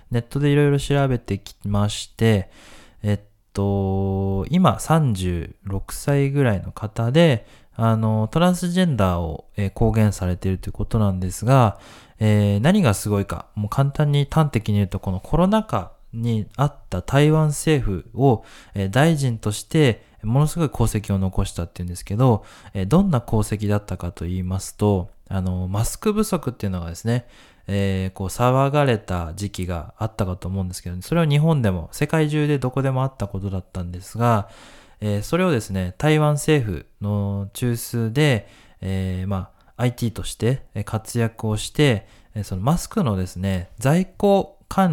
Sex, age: male, 20-39